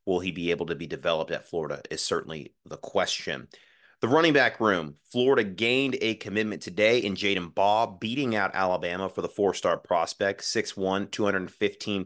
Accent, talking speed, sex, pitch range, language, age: American, 170 wpm, male, 95-110 Hz, English, 30-49